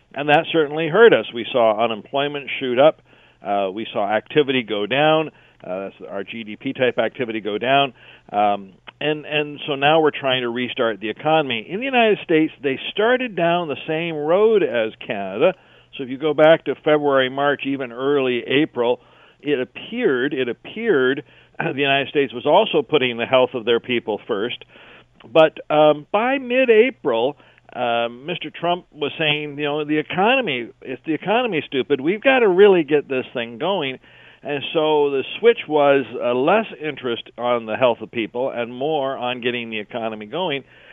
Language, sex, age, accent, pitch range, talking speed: English, male, 50-69, American, 125-160 Hz, 175 wpm